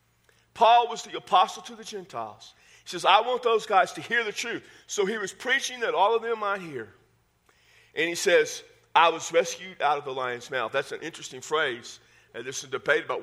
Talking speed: 215 wpm